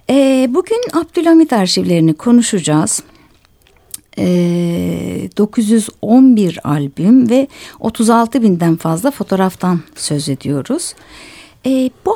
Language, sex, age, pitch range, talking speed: Turkish, female, 60-79, 165-270 Hz, 70 wpm